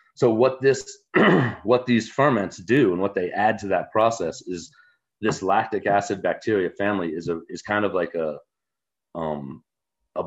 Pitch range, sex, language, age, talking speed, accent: 80-100 Hz, male, English, 30-49, 170 wpm, American